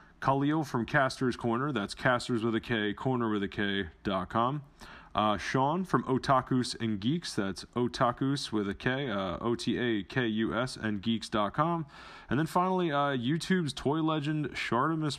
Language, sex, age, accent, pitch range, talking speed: English, male, 30-49, American, 100-130 Hz, 140 wpm